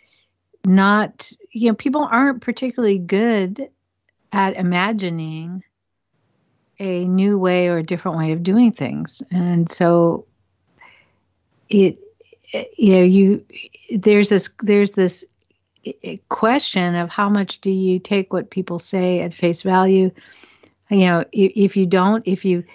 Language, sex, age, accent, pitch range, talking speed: English, female, 60-79, American, 170-195 Hz, 130 wpm